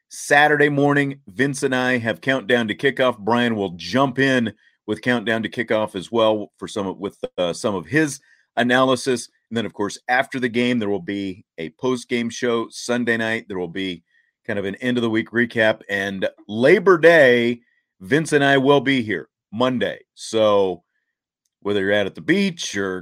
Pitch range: 110-135 Hz